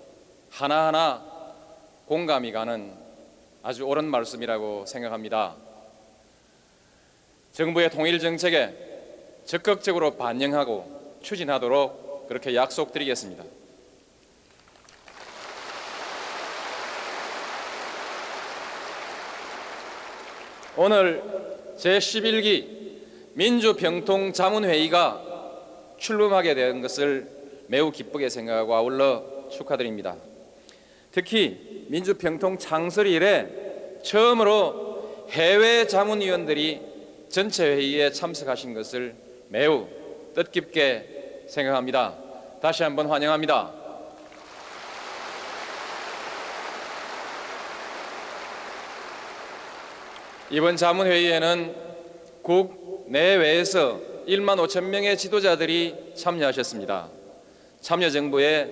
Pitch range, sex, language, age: 140-190 Hz, male, Korean, 30-49